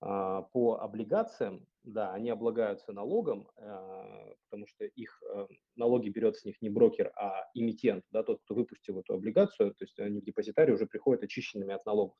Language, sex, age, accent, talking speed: Russian, male, 20-39, native, 160 wpm